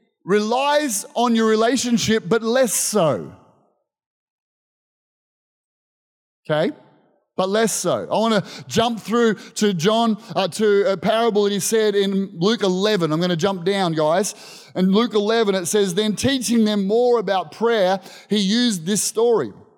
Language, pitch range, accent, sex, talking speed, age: English, 190-230 Hz, Australian, male, 145 wpm, 30-49